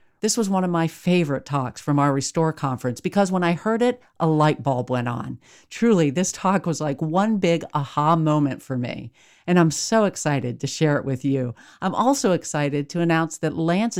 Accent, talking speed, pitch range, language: American, 205 wpm, 140-190 Hz, English